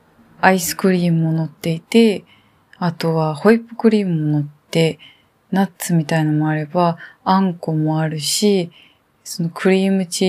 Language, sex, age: Japanese, female, 20-39